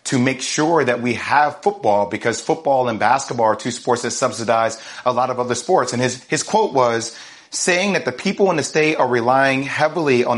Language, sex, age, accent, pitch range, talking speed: English, male, 30-49, American, 125-165 Hz, 215 wpm